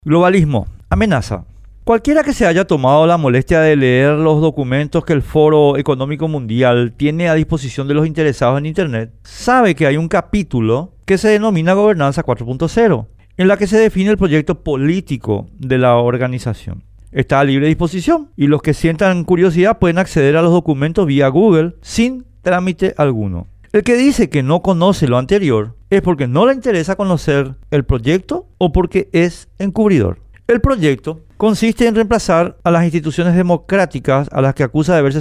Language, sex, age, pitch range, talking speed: Spanish, male, 50-69, 130-185 Hz, 170 wpm